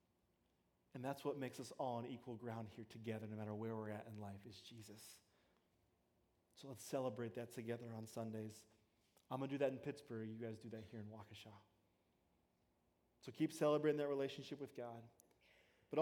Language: English